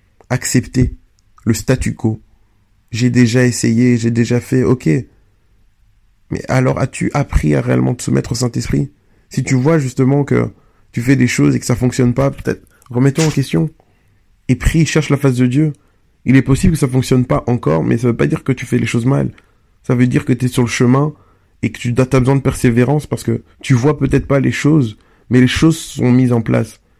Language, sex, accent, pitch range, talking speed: French, male, French, 110-135 Hz, 220 wpm